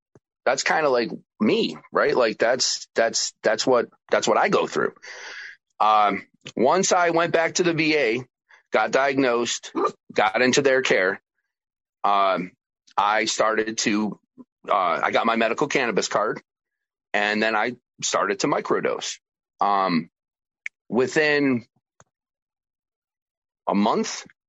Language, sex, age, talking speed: English, male, 30-49, 125 wpm